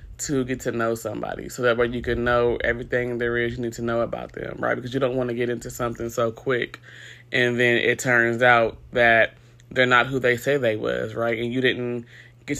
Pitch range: 115-130 Hz